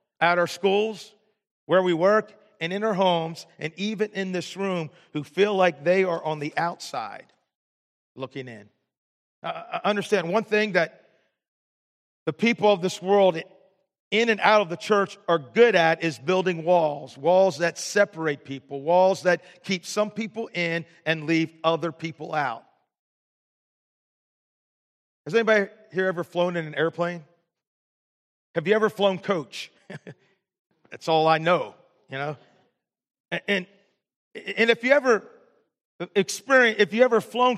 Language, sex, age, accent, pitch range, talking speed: English, male, 40-59, American, 170-210 Hz, 145 wpm